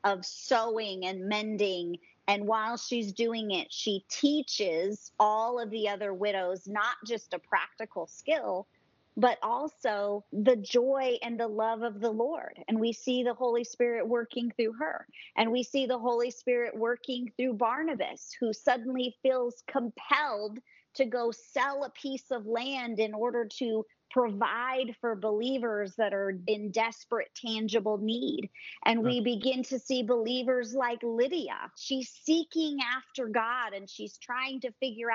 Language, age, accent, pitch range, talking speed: English, 40-59, American, 220-265 Hz, 150 wpm